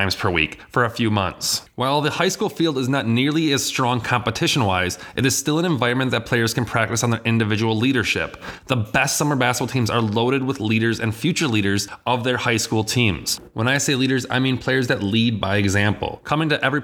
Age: 30-49